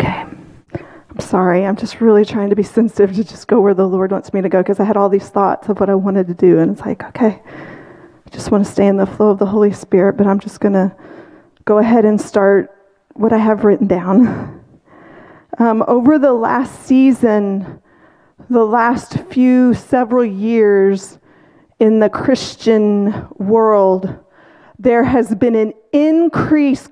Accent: American